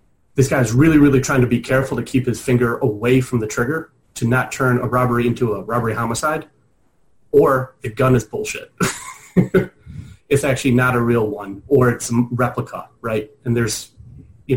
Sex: male